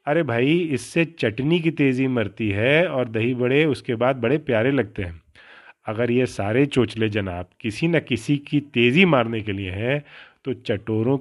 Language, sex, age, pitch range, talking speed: Urdu, male, 30-49, 115-145 Hz, 185 wpm